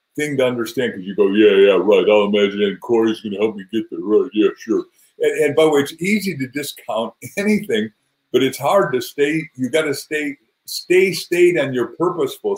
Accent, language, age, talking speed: American, English, 50-69, 215 wpm